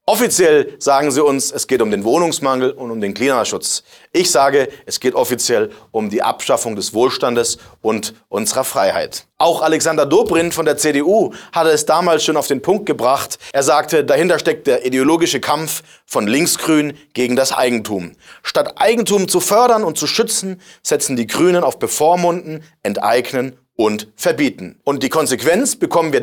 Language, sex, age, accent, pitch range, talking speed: German, male, 40-59, German, 135-180 Hz, 165 wpm